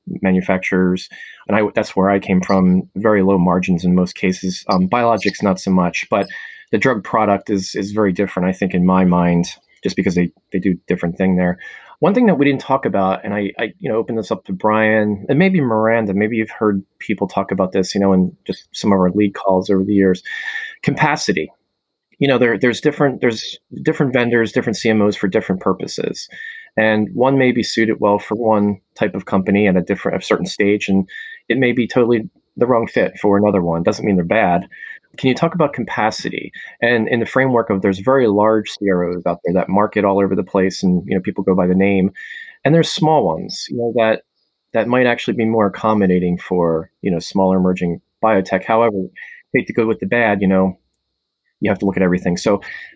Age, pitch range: 20-39, 95-115 Hz